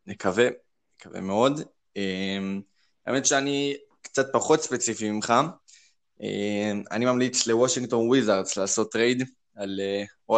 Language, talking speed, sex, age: Hebrew, 110 wpm, male, 20-39